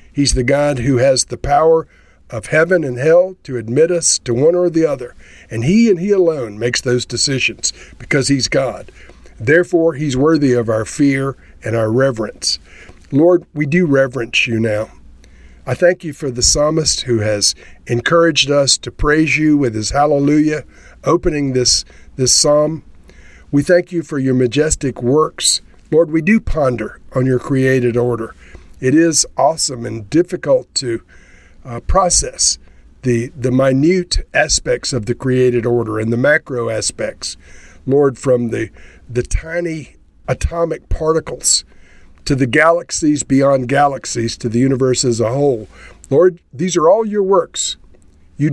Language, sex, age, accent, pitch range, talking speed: English, male, 50-69, American, 115-155 Hz, 155 wpm